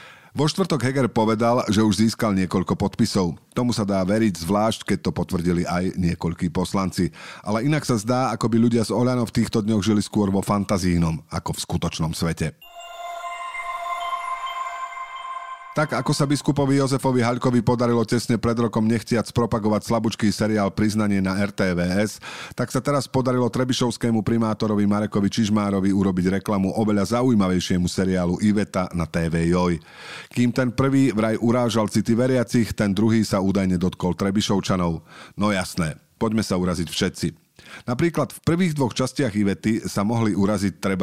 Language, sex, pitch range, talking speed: Slovak, male, 95-125 Hz, 150 wpm